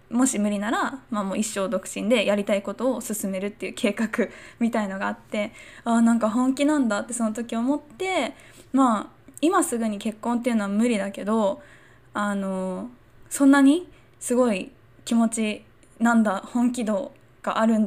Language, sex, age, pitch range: Japanese, female, 10-29, 205-260 Hz